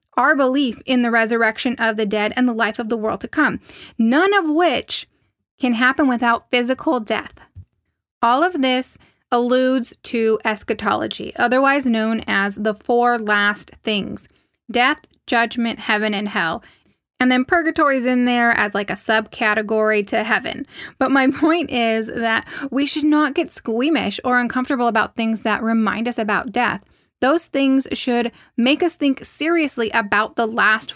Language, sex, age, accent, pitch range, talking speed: English, female, 10-29, American, 225-275 Hz, 160 wpm